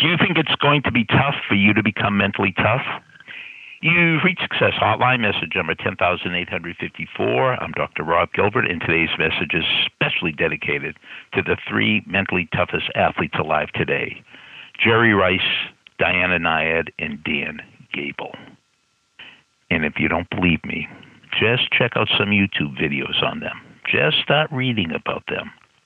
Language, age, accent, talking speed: English, 60-79, American, 150 wpm